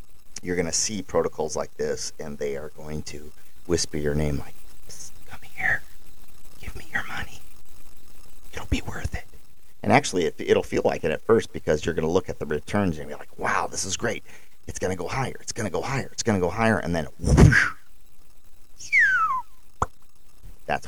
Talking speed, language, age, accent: 200 wpm, English, 40-59, American